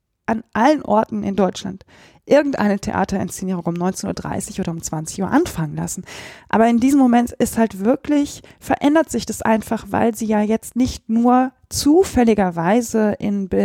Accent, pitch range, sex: German, 200-260 Hz, female